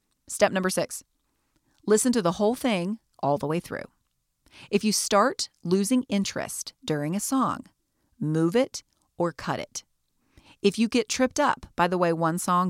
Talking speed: 165 wpm